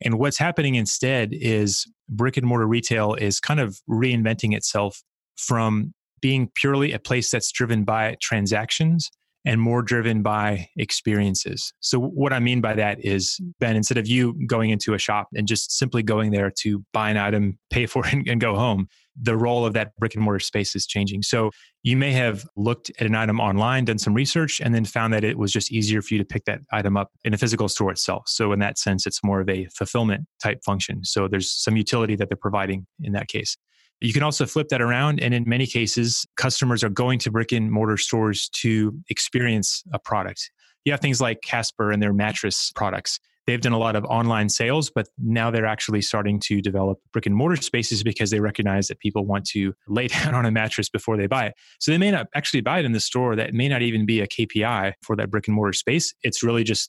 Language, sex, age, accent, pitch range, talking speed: English, male, 30-49, American, 105-120 Hz, 225 wpm